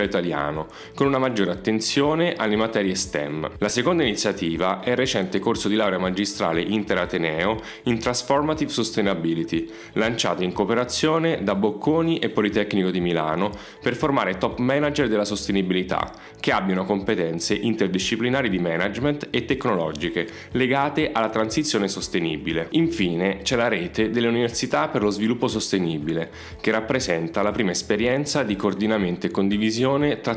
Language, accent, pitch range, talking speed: Italian, native, 95-125 Hz, 135 wpm